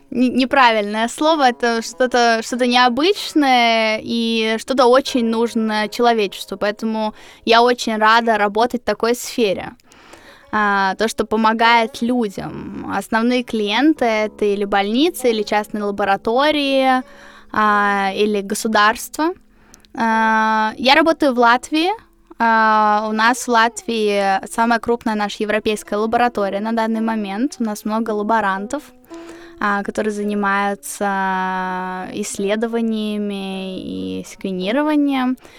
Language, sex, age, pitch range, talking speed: Russian, female, 10-29, 215-255 Hz, 110 wpm